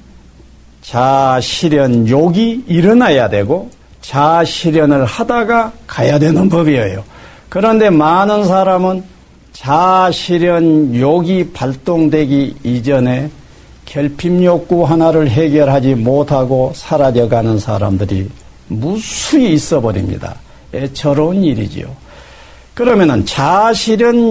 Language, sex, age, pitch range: Korean, male, 50-69, 125-190 Hz